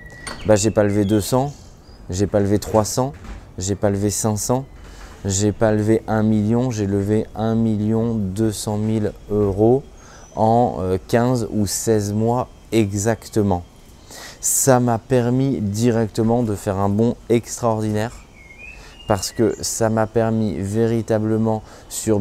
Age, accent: 20-39, French